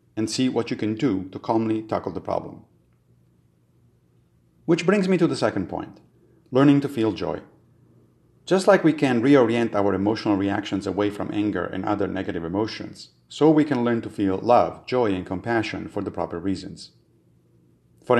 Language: English